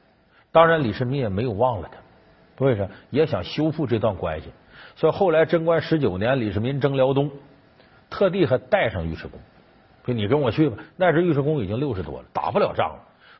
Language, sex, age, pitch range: Chinese, male, 50-69, 105-160 Hz